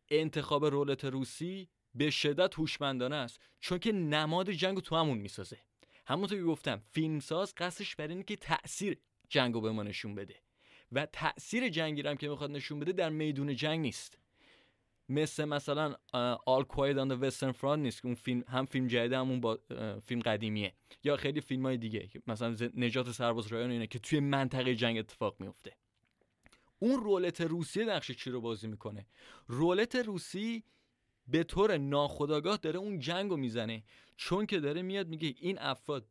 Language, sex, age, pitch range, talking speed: Persian, male, 20-39, 120-165 Hz, 165 wpm